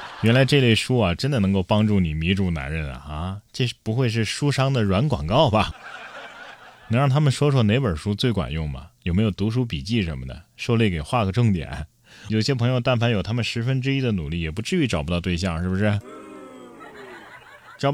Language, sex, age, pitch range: Chinese, male, 20-39, 95-130 Hz